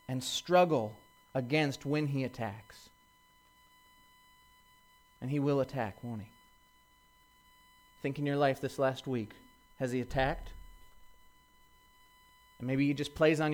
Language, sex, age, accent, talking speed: English, male, 30-49, American, 125 wpm